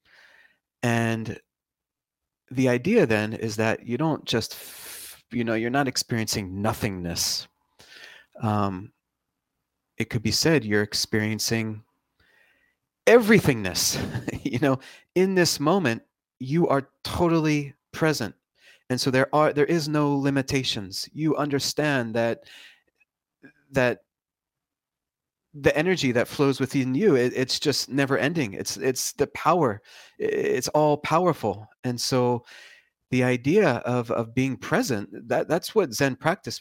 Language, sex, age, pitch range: English, male, 30-49, 110-140 Hz